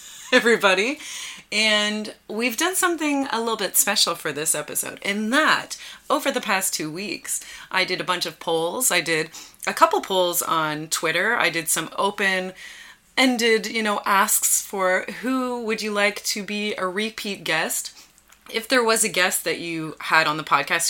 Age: 30-49